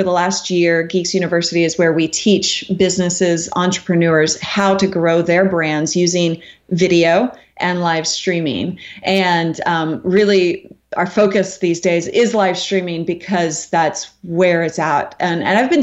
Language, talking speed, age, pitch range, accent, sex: English, 150 wpm, 30-49, 170-210 Hz, American, female